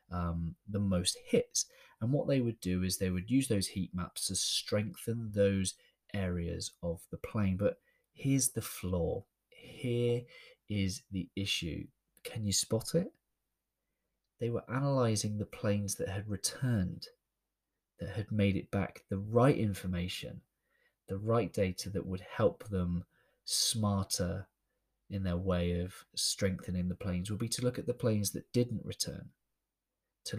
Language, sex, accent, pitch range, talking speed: English, male, British, 95-115 Hz, 150 wpm